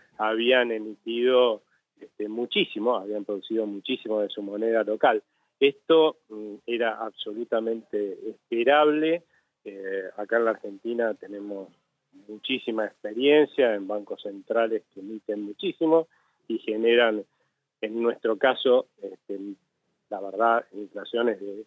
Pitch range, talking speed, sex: 105-130 Hz, 100 wpm, male